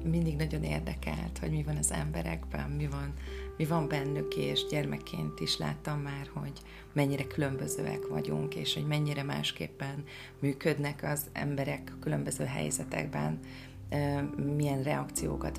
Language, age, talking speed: Hungarian, 30-49, 125 wpm